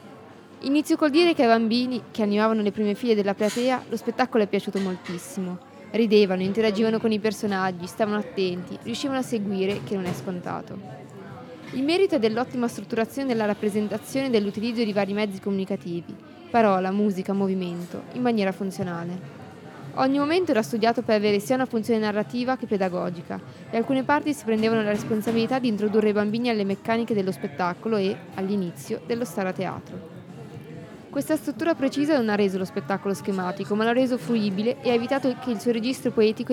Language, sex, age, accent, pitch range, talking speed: Italian, female, 20-39, native, 200-245 Hz, 170 wpm